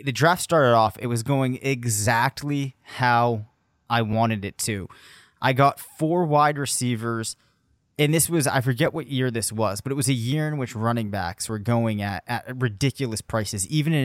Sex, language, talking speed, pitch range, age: male, English, 190 wpm, 110-135 Hz, 20-39